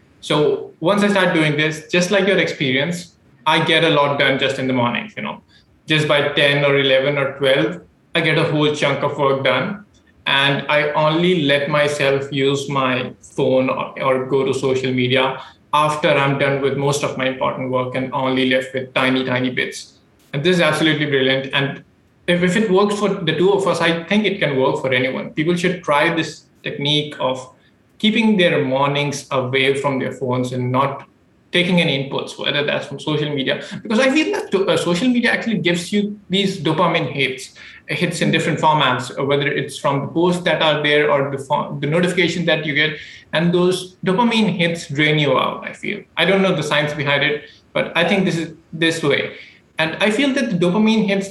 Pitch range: 140-180 Hz